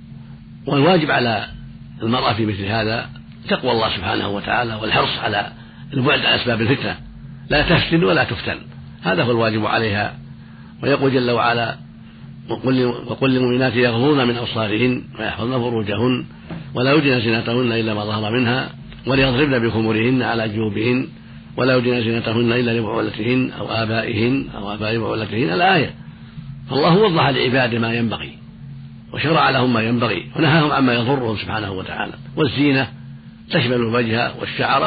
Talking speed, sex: 130 wpm, male